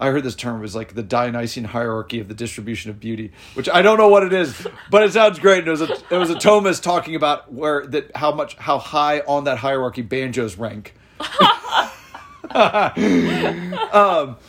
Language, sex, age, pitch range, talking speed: English, male, 40-59, 105-165 Hz, 180 wpm